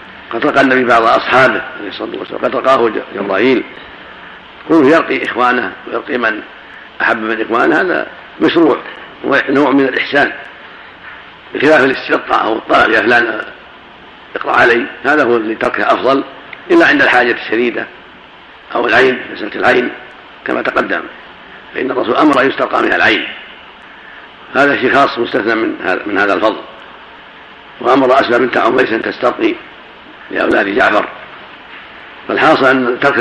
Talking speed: 125 wpm